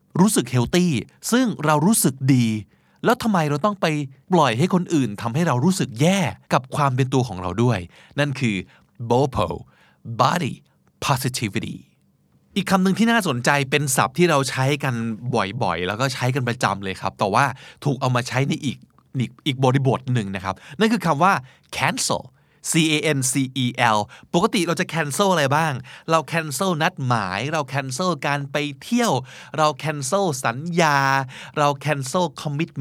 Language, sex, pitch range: Thai, male, 130-175 Hz